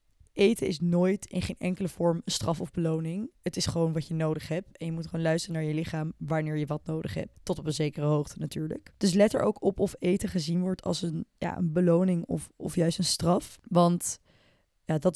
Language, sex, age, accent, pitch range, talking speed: Dutch, female, 20-39, Dutch, 170-200 Hz, 225 wpm